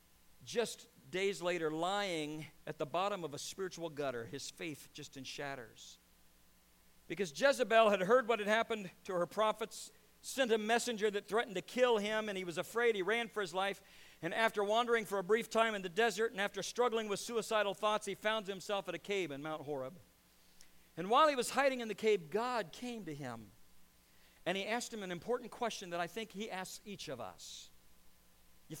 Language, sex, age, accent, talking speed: English, male, 50-69, American, 200 wpm